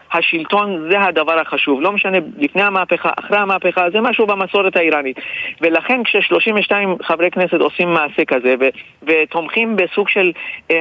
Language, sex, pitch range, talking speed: Hebrew, male, 150-190 Hz, 145 wpm